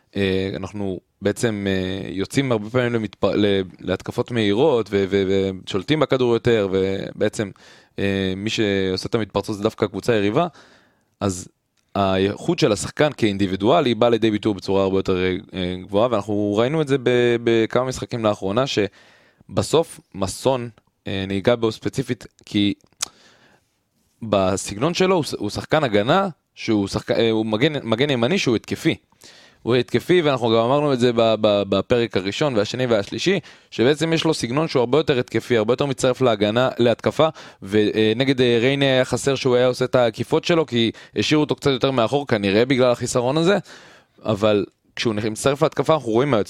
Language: Hebrew